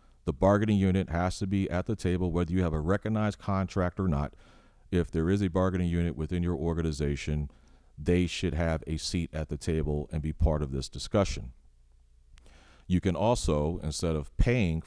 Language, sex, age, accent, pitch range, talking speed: English, male, 40-59, American, 70-90 Hz, 185 wpm